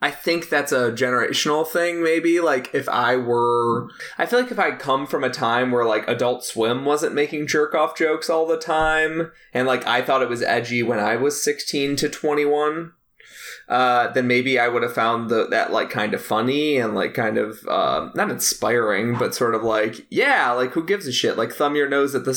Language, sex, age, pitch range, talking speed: English, male, 20-39, 120-150 Hz, 225 wpm